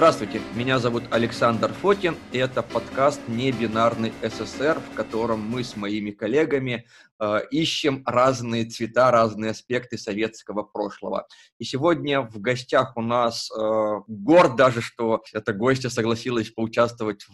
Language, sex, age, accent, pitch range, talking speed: Russian, male, 20-39, native, 110-130 Hz, 130 wpm